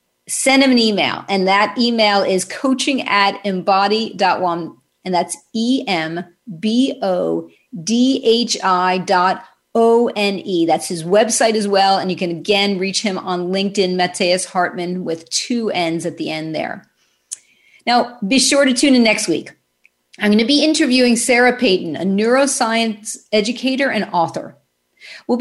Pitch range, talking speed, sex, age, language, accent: 185-245 Hz, 140 wpm, female, 40-59, English, American